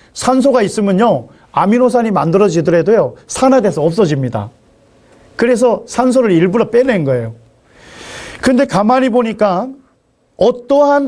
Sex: male